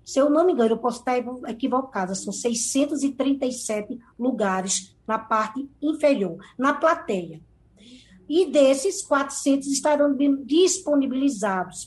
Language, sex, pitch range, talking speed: Portuguese, female, 220-290 Hz, 110 wpm